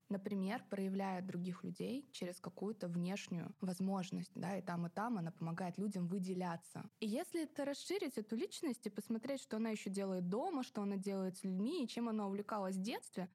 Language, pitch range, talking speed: Russian, 185-235 Hz, 185 wpm